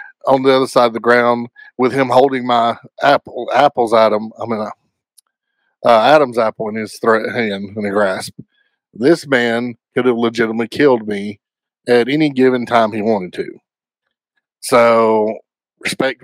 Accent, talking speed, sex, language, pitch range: American, 160 wpm, male, English, 110-135 Hz